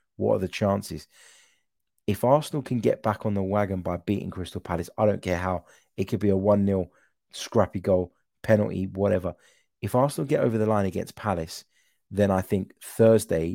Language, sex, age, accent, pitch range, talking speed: English, male, 30-49, British, 90-105 Hz, 180 wpm